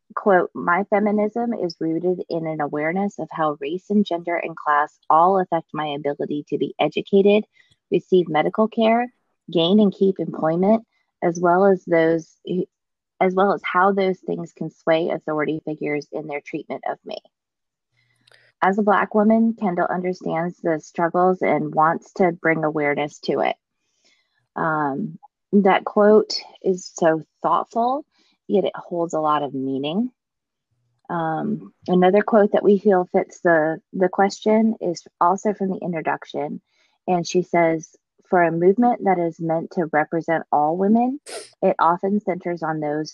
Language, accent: English, American